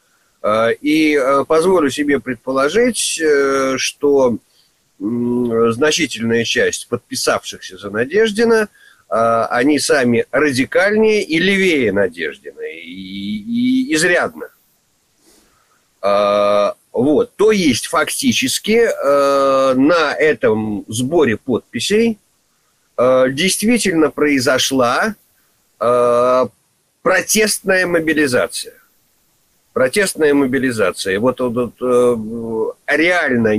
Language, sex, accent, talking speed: Russian, male, native, 65 wpm